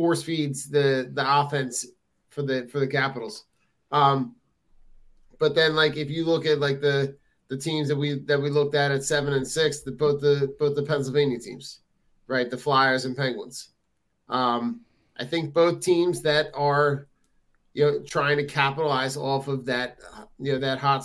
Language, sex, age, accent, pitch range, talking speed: English, male, 30-49, American, 135-155 Hz, 180 wpm